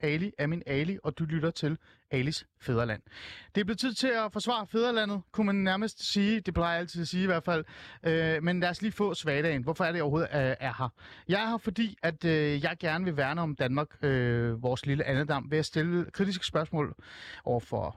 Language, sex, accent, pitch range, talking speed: Danish, male, native, 130-180 Hz, 225 wpm